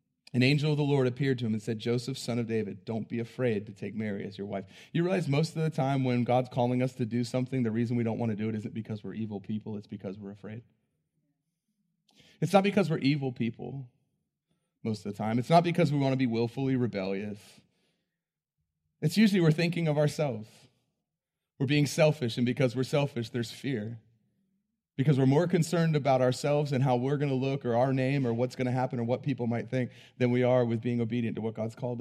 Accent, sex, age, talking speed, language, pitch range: American, male, 30-49, 230 wpm, English, 120-155 Hz